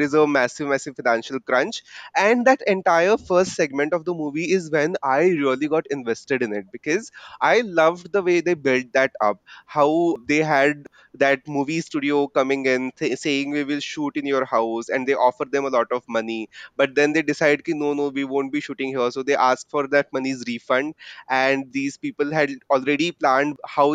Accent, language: Indian, English